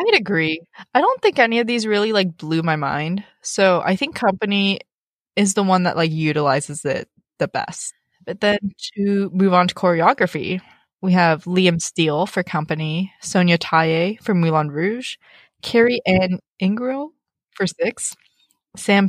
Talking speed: 155 wpm